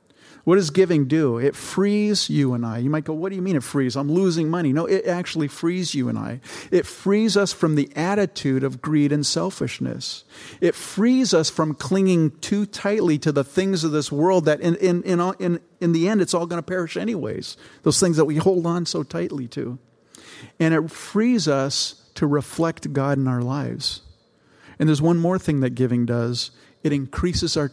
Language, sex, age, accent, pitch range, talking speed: English, male, 50-69, American, 140-180 Hz, 200 wpm